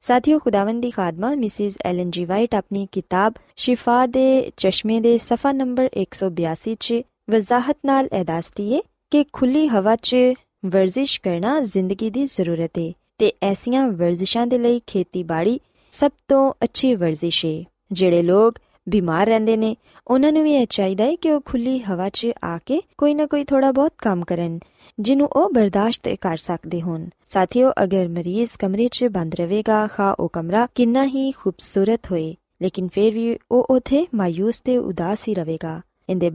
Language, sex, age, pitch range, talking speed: Punjabi, female, 20-39, 190-250 Hz, 140 wpm